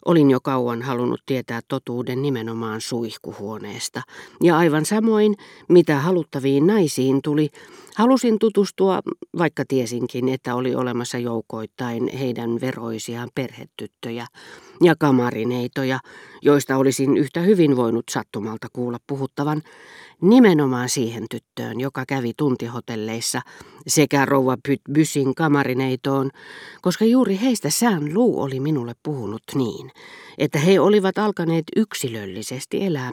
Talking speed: 110 wpm